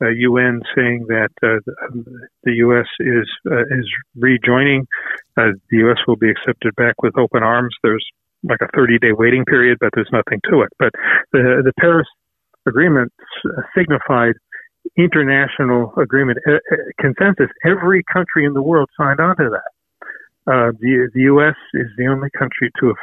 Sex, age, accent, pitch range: male, 50-69, American, 120-140 Hz